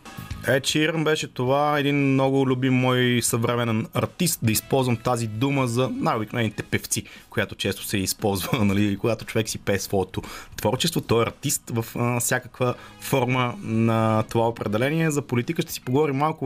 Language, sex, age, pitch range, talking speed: Bulgarian, male, 30-49, 105-135 Hz, 155 wpm